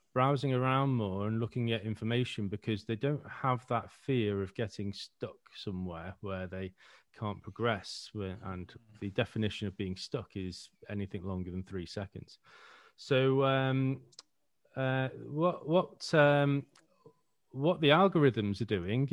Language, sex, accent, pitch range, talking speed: English, male, British, 100-130 Hz, 140 wpm